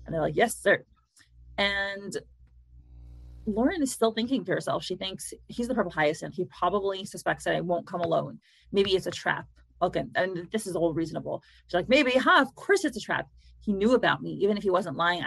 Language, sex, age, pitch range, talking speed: English, female, 30-49, 170-220 Hz, 210 wpm